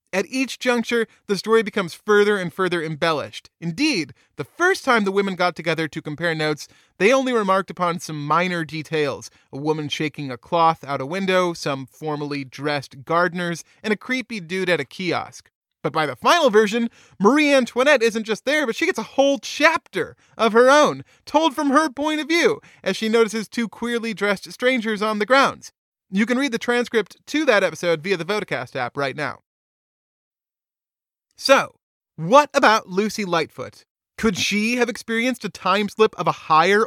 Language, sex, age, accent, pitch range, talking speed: English, male, 30-49, American, 170-250 Hz, 180 wpm